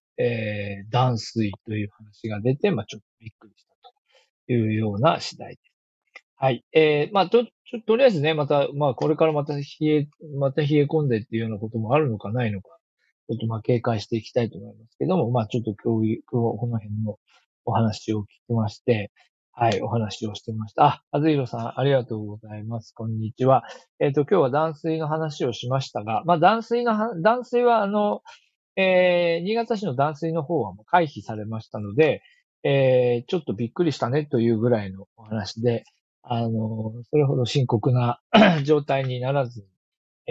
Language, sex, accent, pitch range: Japanese, male, native, 110-150 Hz